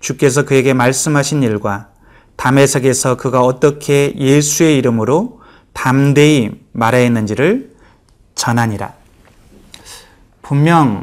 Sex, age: male, 30-49